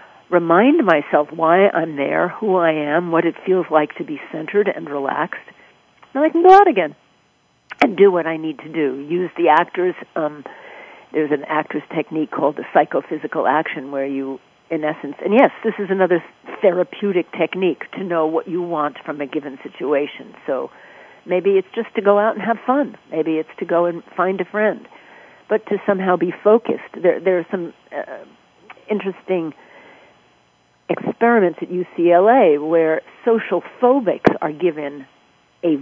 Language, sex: English, female